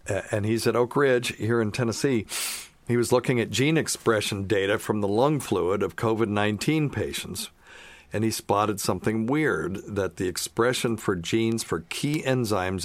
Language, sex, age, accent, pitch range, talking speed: English, male, 50-69, American, 90-115 Hz, 165 wpm